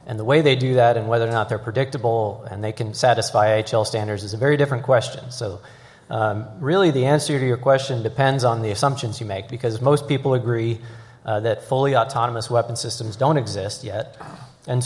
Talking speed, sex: 205 wpm, male